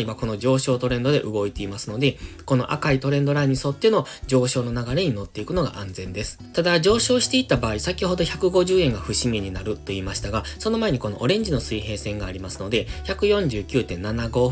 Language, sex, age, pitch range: Japanese, male, 20-39, 105-160 Hz